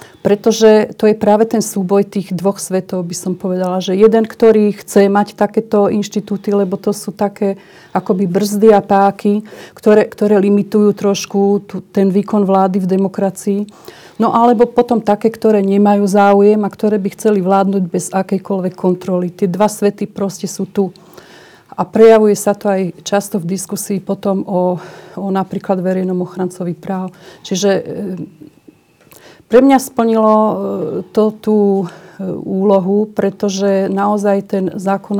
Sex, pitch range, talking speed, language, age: female, 190-210 Hz, 140 wpm, Slovak, 40-59